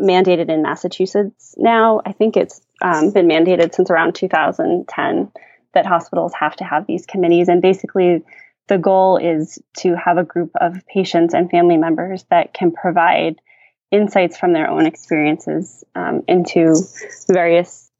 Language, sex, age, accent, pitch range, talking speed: English, female, 20-39, American, 170-210 Hz, 150 wpm